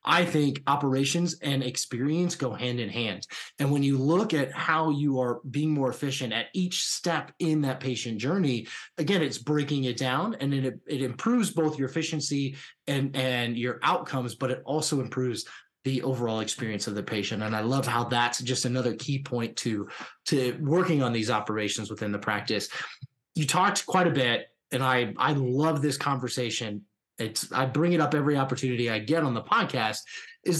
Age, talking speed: 20-39, 185 wpm